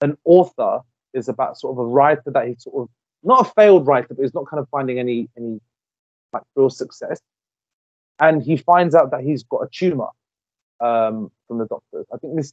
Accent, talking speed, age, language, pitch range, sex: British, 205 wpm, 30-49, English, 125-165 Hz, male